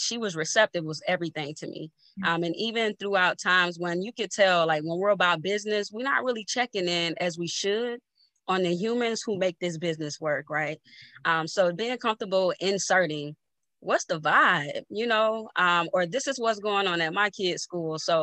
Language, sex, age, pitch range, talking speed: English, female, 20-39, 165-210 Hz, 195 wpm